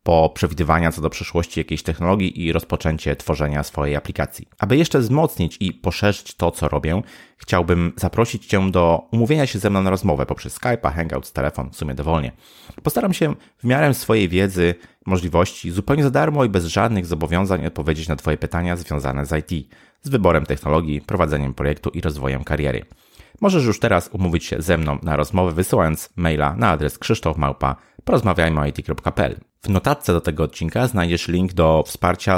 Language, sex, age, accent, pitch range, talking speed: Polish, male, 30-49, native, 80-100 Hz, 170 wpm